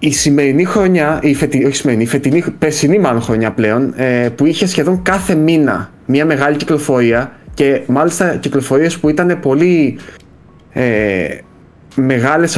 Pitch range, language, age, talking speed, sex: 130-170 Hz, Greek, 20-39, 130 wpm, male